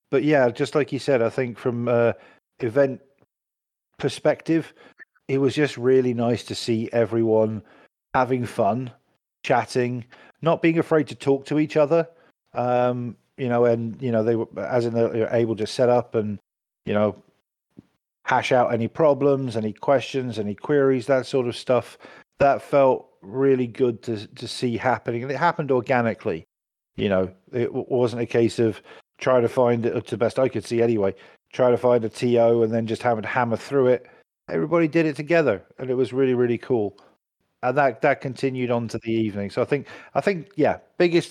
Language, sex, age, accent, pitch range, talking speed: English, male, 50-69, British, 110-135 Hz, 190 wpm